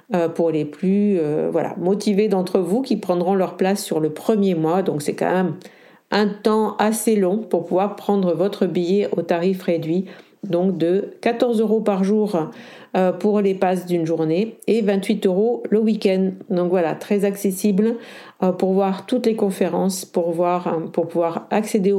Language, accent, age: French, French, 50-69